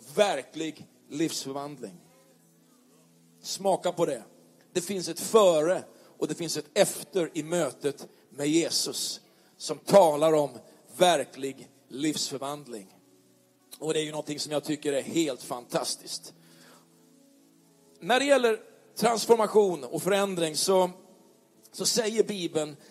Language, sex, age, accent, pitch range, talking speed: Swedish, male, 40-59, native, 150-200 Hz, 115 wpm